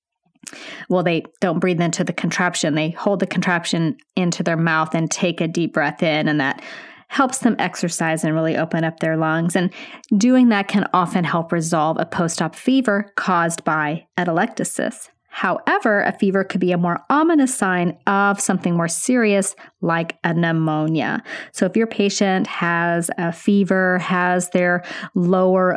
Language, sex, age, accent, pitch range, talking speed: English, female, 30-49, American, 165-200 Hz, 165 wpm